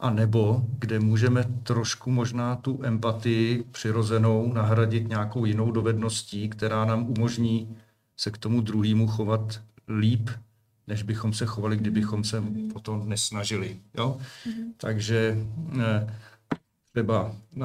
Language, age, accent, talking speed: Czech, 50-69, native, 110 wpm